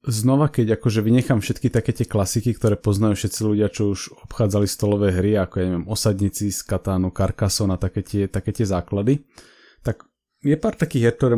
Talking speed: 190 wpm